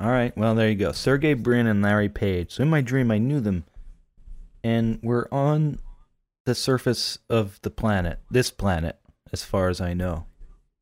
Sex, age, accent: male, 30-49, American